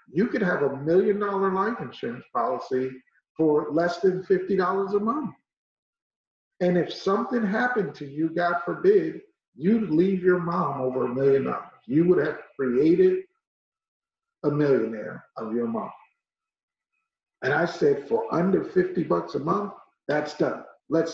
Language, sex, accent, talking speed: English, male, American, 145 wpm